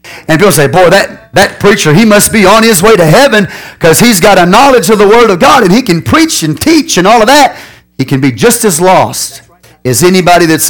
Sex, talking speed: male, 245 wpm